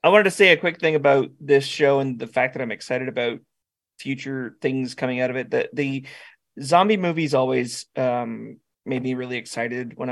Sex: male